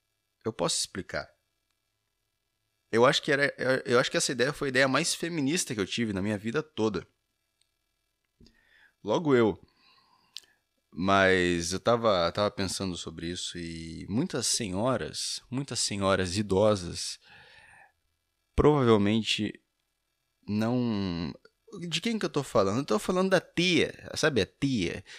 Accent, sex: Brazilian, male